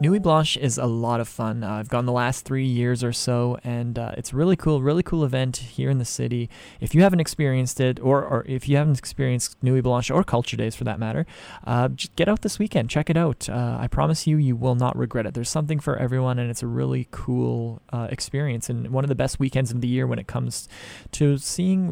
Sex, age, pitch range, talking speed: male, 20-39, 120-145 Hz, 245 wpm